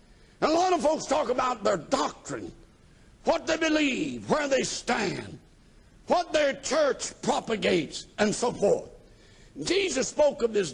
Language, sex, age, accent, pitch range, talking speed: English, male, 60-79, American, 245-330 Hz, 140 wpm